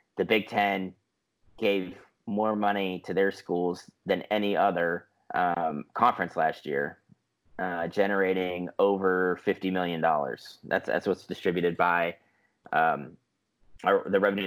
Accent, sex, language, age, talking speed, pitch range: American, male, English, 30-49, 125 wpm, 90-100 Hz